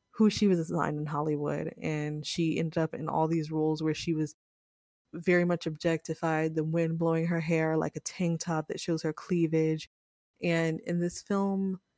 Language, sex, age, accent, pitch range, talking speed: English, female, 20-39, American, 155-170 Hz, 185 wpm